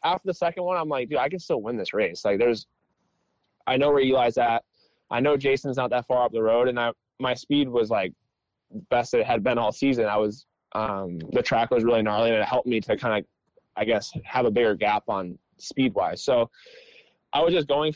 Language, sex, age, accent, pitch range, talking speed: English, male, 20-39, American, 115-140 Hz, 235 wpm